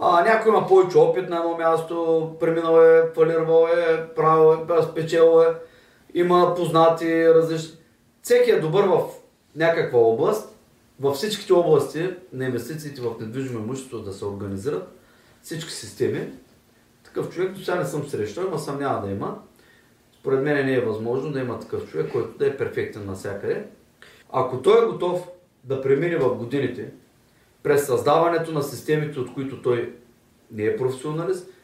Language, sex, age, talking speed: Bulgarian, male, 30-49, 155 wpm